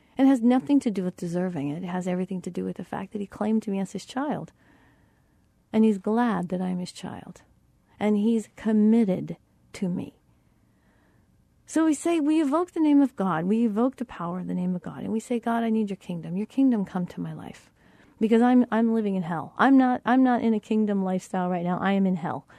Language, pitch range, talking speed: English, 185-250 Hz, 230 wpm